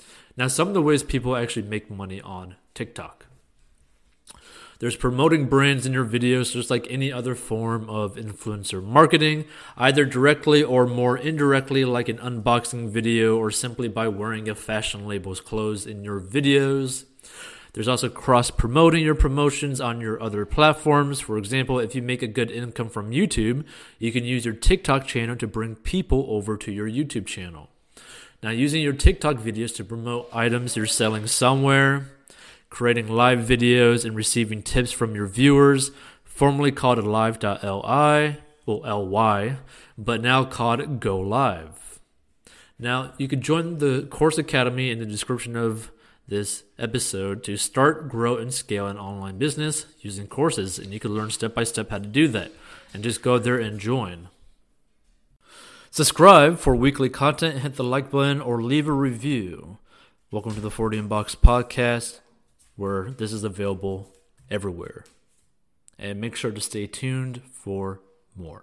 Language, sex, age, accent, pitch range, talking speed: English, male, 30-49, American, 105-135 Hz, 155 wpm